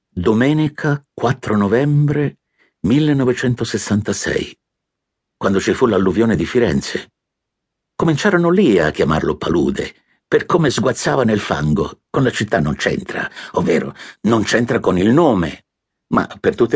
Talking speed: 120 wpm